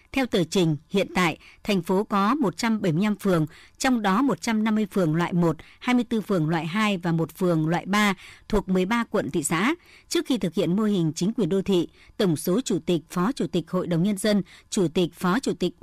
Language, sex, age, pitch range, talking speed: Vietnamese, male, 60-79, 180-220 Hz, 210 wpm